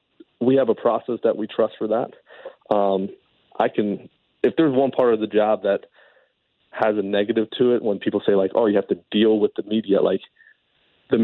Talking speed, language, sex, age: 210 wpm, English, male, 30-49